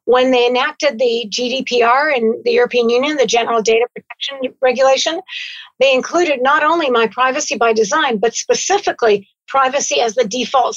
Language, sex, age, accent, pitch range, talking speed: English, female, 50-69, American, 235-300 Hz, 155 wpm